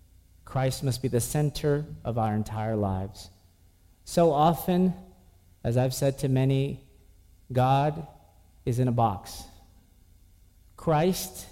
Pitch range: 90-140 Hz